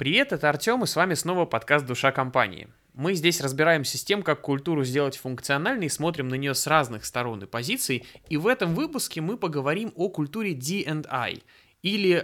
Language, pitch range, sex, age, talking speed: Russian, 125-165 Hz, male, 20-39, 185 wpm